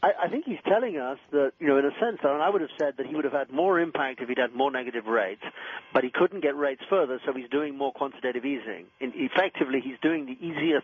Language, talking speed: English, 250 wpm